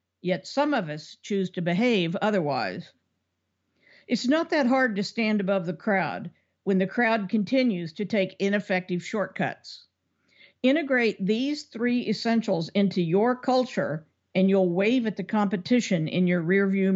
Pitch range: 180-225 Hz